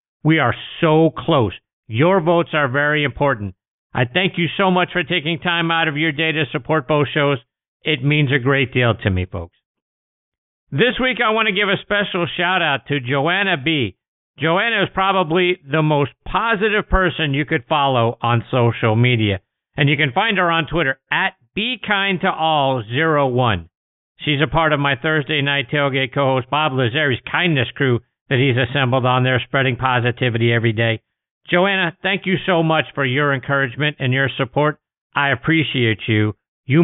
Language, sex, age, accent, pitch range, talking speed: English, male, 50-69, American, 130-170 Hz, 170 wpm